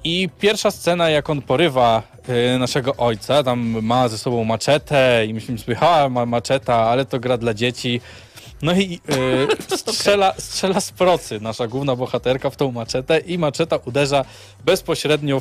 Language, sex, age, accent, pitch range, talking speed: Polish, male, 20-39, native, 120-155 Hz, 160 wpm